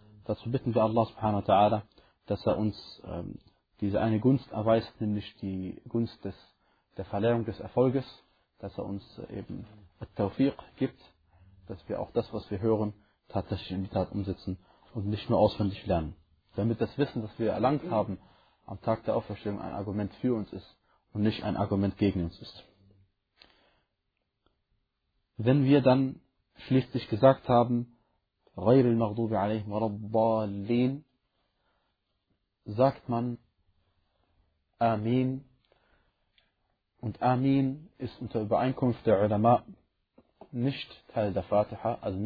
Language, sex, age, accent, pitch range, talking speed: German, male, 30-49, German, 100-120 Hz, 130 wpm